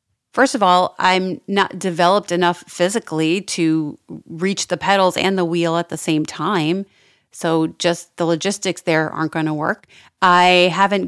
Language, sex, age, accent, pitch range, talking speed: English, female, 30-49, American, 160-185 Hz, 155 wpm